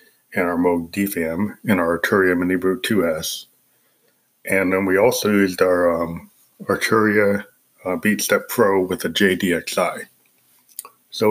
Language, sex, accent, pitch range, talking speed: English, male, American, 85-100 Hz, 135 wpm